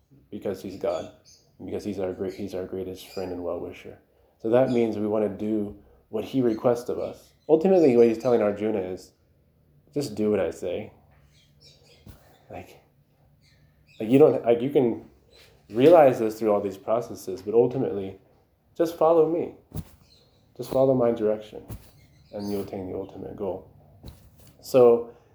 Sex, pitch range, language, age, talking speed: male, 95-125 Hz, English, 20-39, 155 wpm